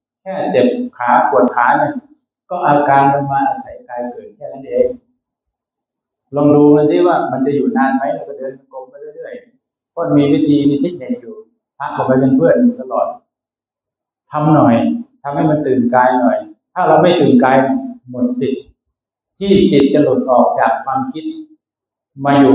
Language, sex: Thai, male